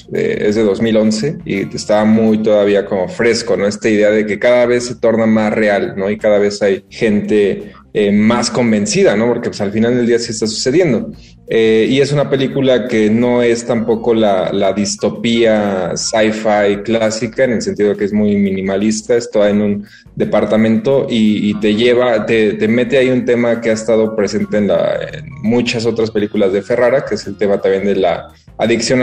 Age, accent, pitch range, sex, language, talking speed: 20-39, Mexican, 105-120 Hz, male, Spanish, 200 wpm